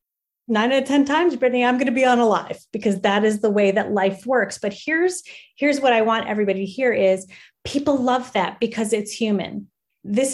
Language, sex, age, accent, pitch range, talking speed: English, female, 30-49, American, 195-240 Hz, 220 wpm